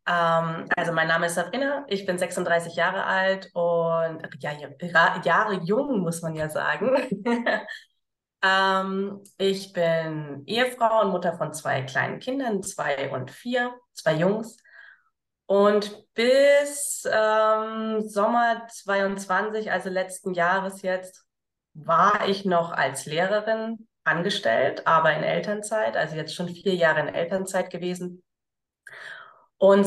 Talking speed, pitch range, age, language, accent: 125 wpm, 175-215 Hz, 20-39, German, German